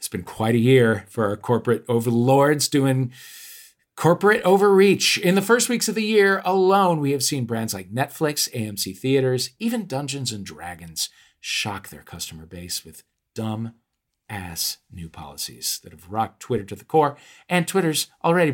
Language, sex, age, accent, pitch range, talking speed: English, male, 50-69, American, 110-155 Hz, 165 wpm